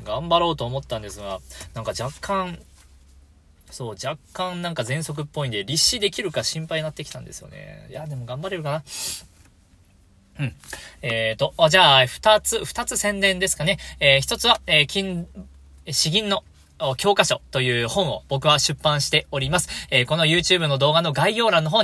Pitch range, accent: 135-195 Hz, native